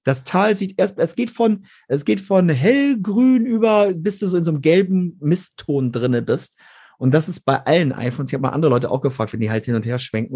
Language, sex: German, male